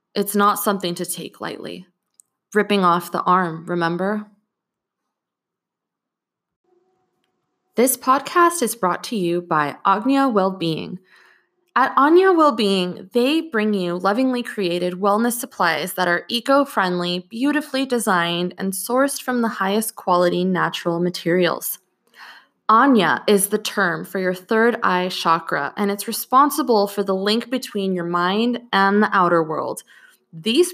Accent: American